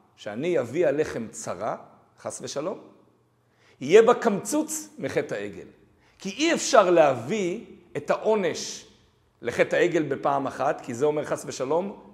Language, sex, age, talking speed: Hebrew, male, 40-59, 130 wpm